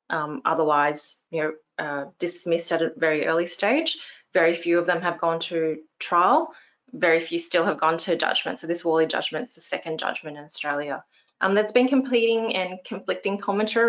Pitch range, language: 160-185 Hz, English